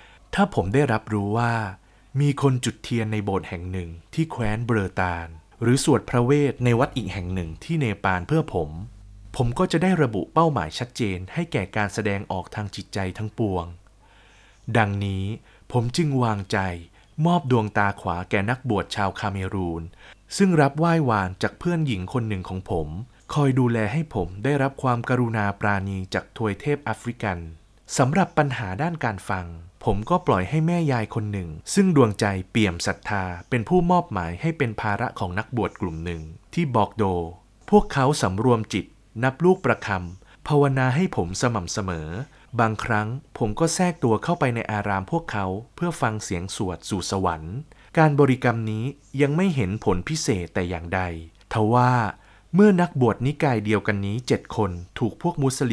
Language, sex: Thai, male